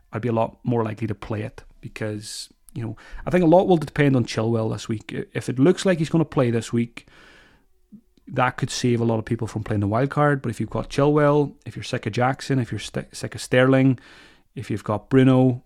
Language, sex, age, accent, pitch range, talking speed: English, male, 30-49, British, 110-130 Hz, 245 wpm